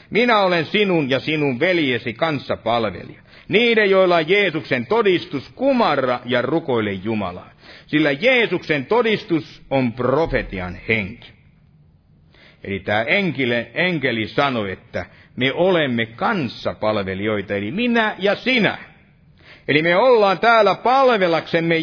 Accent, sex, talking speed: native, male, 115 wpm